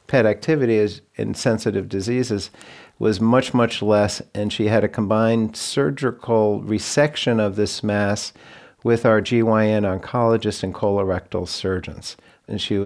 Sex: male